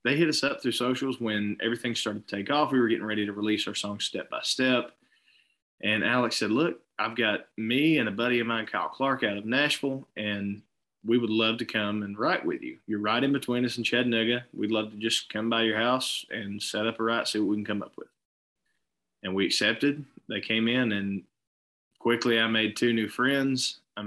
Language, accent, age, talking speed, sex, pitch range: English, American, 20-39, 220 wpm, male, 105-120 Hz